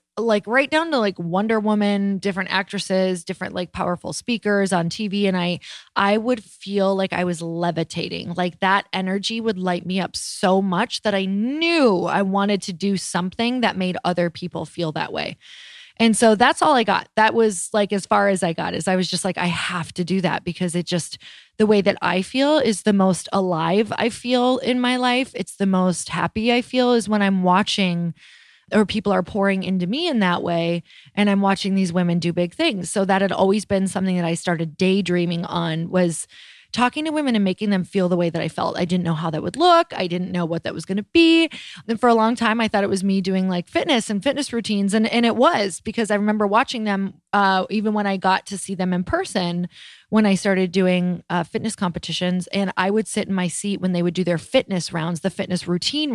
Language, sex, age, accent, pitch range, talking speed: English, female, 20-39, American, 180-220 Hz, 230 wpm